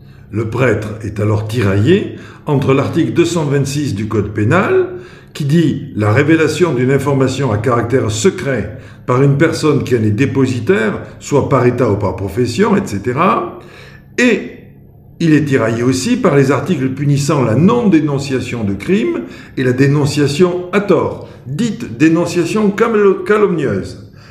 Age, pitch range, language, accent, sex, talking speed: 60-79, 115-160 Hz, French, French, male, 135 wpm